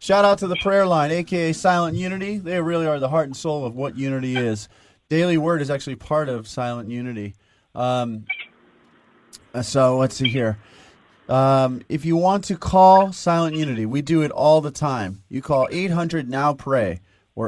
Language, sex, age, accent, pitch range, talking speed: English, male, 30-49, American, 115-160 Hz, 175 wpm